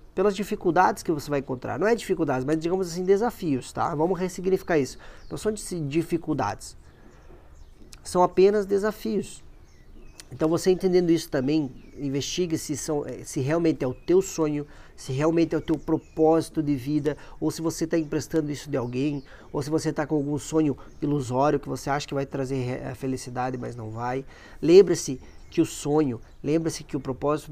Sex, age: male, 20-39